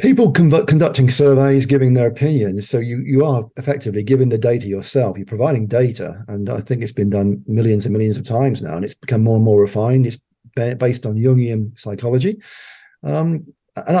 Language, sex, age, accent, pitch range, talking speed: English, male, 40-59, British, 115-145 Hz, 195 wpm